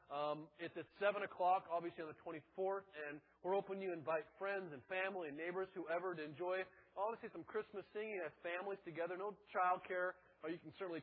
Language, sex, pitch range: English, male, 155-190 Hz